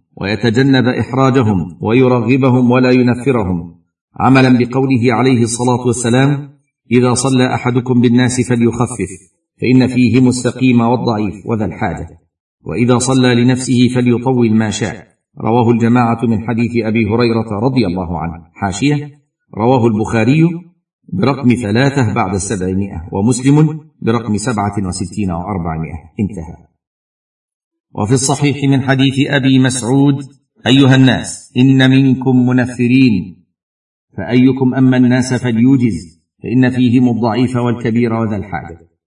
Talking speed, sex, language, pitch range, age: 110 wpm, male, Arabic, 100-130 Hz, 50-69